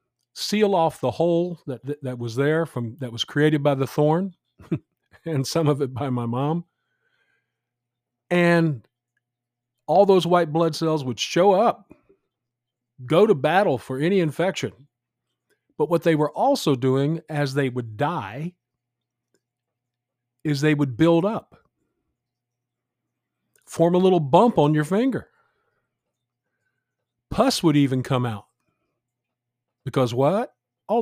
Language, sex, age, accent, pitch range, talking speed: English, male, 50-69, American, 120-165 Hz, 130 wpm